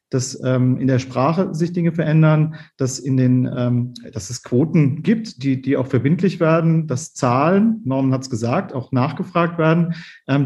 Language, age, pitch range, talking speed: German, 40-59, 140-175 Hz, 180 wpm